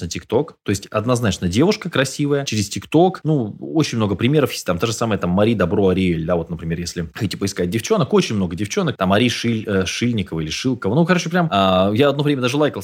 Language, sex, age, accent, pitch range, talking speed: Russian, male, 20-39, native, 95-145 Hz, 225 wpm